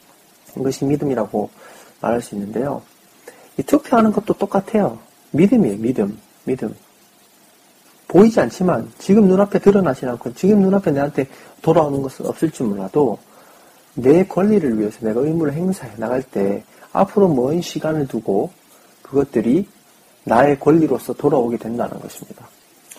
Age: 40-59